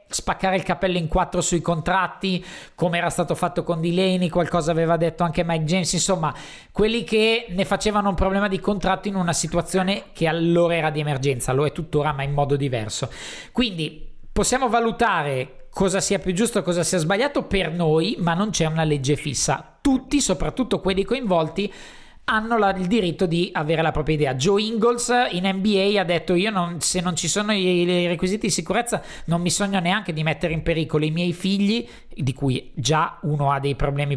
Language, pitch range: Italian, 150-195 Hz